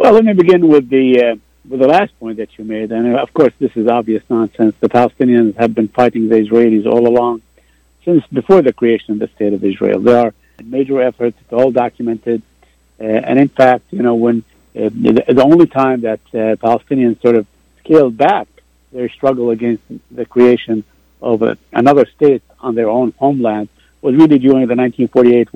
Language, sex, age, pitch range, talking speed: Arabic, male, 50-69, 115-130 Hz, 195 wpm